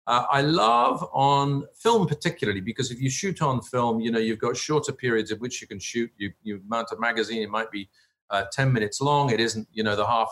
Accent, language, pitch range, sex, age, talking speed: British, English, 110-145 Hz, male, 40-59, 240 wpm